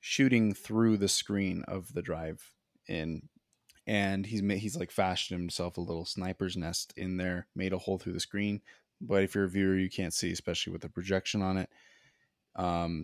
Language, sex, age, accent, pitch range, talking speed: English, male, 20-39, American, 90-110 Hz, 195 wpm